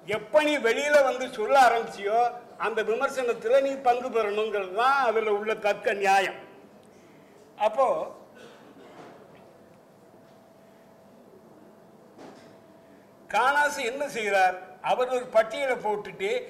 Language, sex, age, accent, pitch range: Tamil, male, 60-79, native, 210-260 Hz